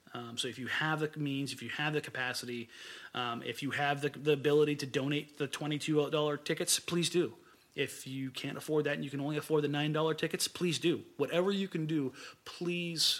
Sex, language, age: male, English, 30-49